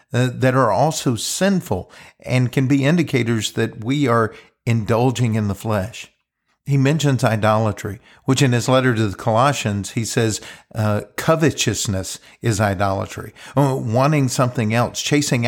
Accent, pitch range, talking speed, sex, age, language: American, 110-140 Hz, 135 wpm, male, 50-69, English